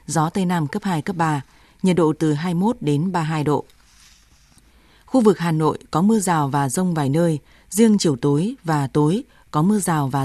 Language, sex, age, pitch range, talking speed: Vietnamese, female, 20-39, 155-195 Hz, 200 wpm